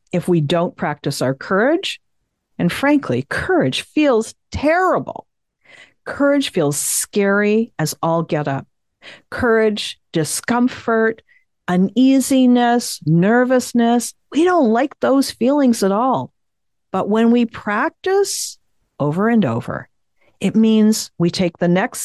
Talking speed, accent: 115 wpm, American